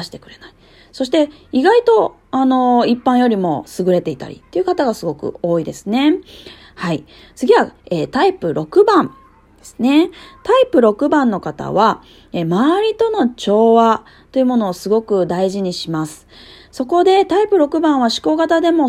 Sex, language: female, Japanese